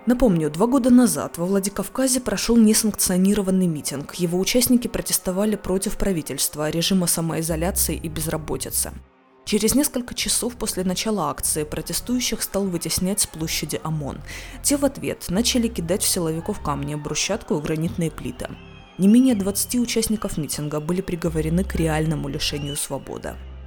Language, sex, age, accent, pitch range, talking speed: Russian, female, 20-39, native, 160-210 Hz, 135 wpm